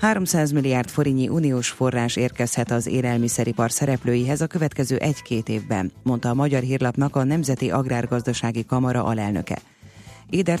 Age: 30-49